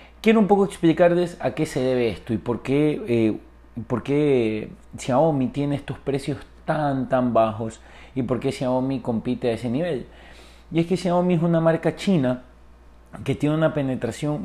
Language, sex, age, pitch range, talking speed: Spanish, male, 30-49, 115-155 Hz, 175 wpm